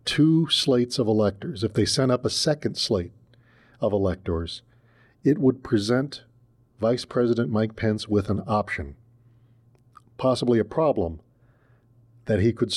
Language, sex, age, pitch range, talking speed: English, male, 40-59, 115-140 Hz, 135 wpm